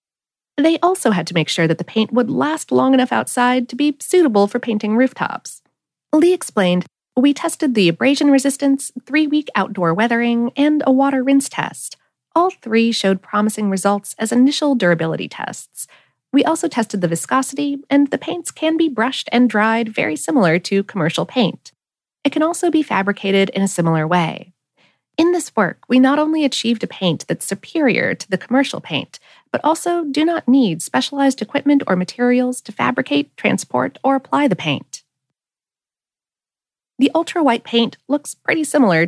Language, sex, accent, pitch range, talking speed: English, female, American, 195-290 Hz, 165 wpm